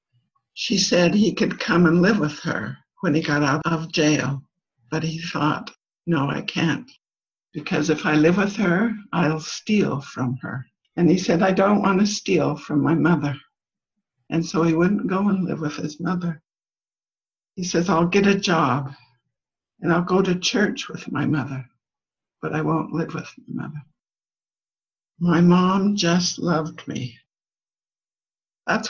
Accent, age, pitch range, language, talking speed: American, 60-79, 160-200 Hz, English, 165 wpm